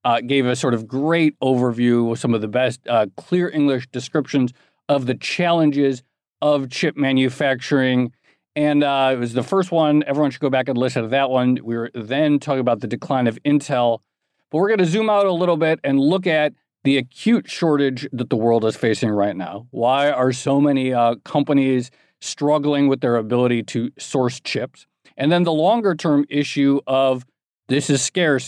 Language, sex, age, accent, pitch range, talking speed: English, male, 40-59, American, 125-145 Hz, 195 wpm